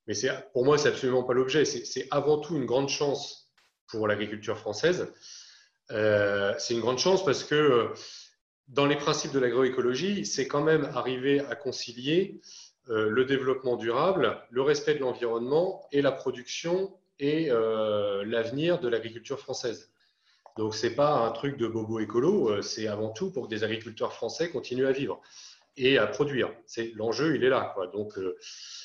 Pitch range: 115-150 Hz